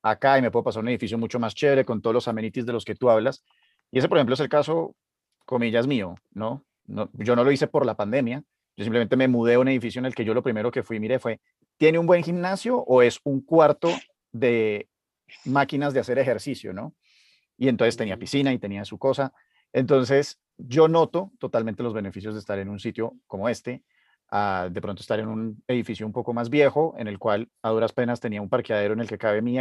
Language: Spanish